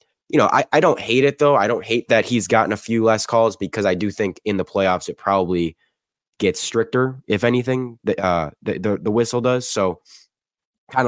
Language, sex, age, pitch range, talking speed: English, male, 10-29, 90-110 Hz, 210 wpm